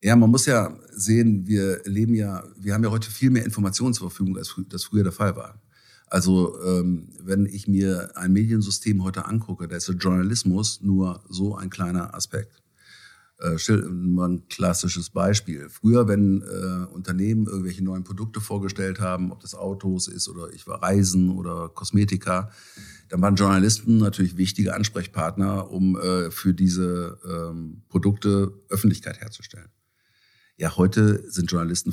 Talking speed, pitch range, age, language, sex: 160 wpm, 90-105 Hz, 50-69, Hungarian, male